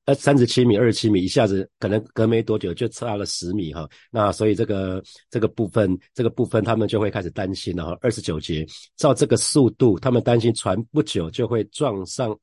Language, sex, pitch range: Chinese, male, 95-125 Hz